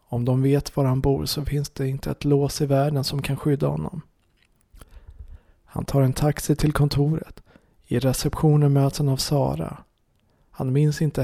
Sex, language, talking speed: male, Swedish, 175 wpm